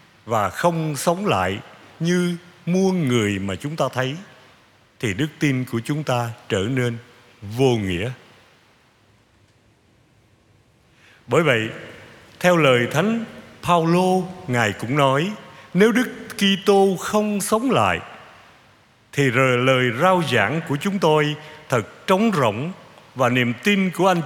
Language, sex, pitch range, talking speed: Vietnamese, male, 110-165 Hz, 130 wpm